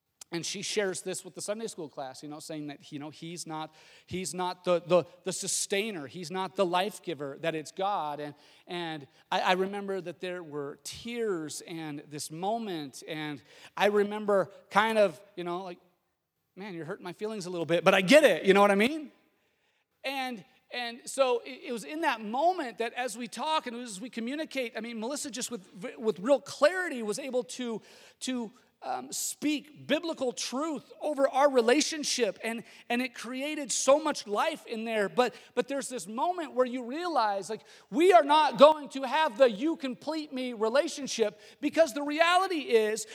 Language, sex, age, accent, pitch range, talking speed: English, male, 40-59, American, 185-285 Hz, 190 wpm